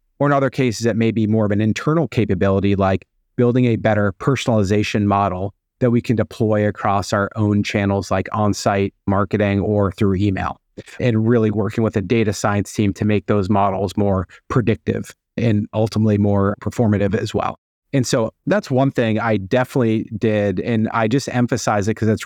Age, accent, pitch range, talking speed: 30-49, American, 105-120 Hz, 180 wpm